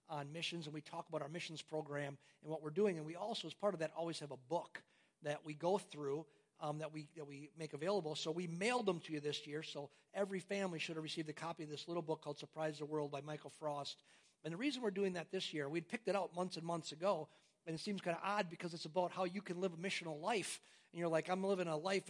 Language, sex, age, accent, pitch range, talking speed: English, male, 50-69, American, 155-205 Hz, 275 wpm